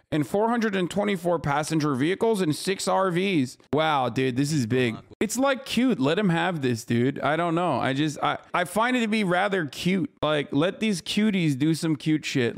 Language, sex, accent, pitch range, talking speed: English, male, American, 135-185 Hz, 195 wpm